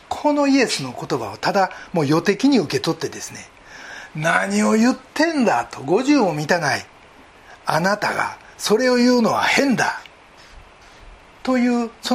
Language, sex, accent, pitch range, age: Japanese, male, native, 150-235 Hz, 40-59